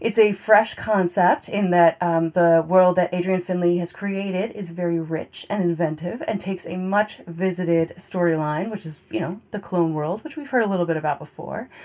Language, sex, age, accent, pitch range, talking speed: English, female, 20-39, American, 175-225 Hz, 205 wpm